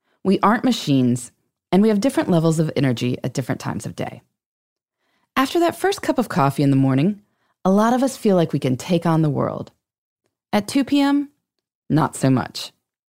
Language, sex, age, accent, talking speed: English, female, 20-39, American, 190 wpm